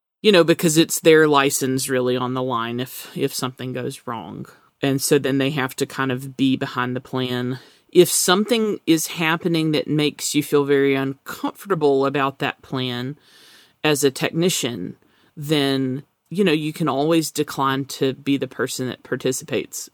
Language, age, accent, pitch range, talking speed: English, 30-49, American, 130-150 Hz, 170 wpm